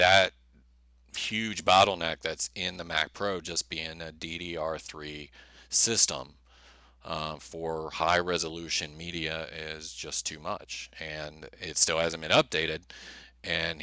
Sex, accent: male, American